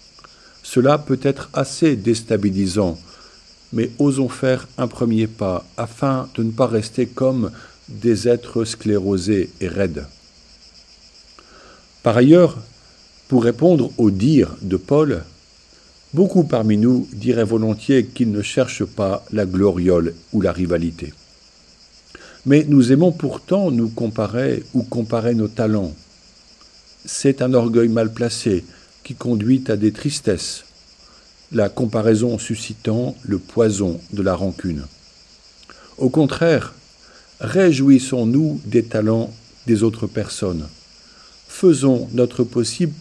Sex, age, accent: male, 50-69, French